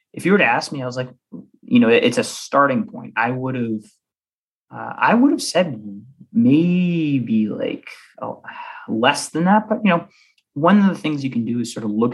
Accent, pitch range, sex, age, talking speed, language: American, 105-150 Hz, male, 20-39, 215 wpm, English